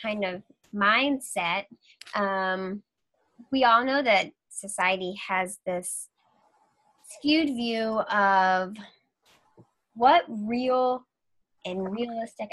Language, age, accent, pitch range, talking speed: English, 10-29, American, 190-240 Hz, 85 wpm